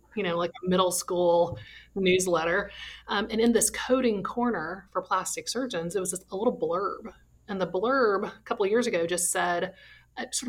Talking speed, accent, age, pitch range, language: 190 wpm, American, 30-49, 180-235 Hz, English